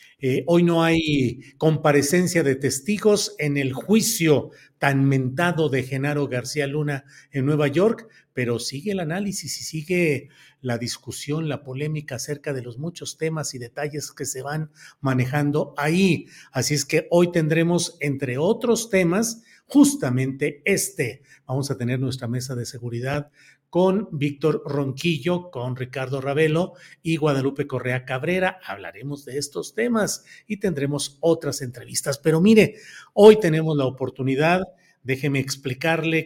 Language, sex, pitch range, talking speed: Spanish, male, 135-165 Hz, 140 wpm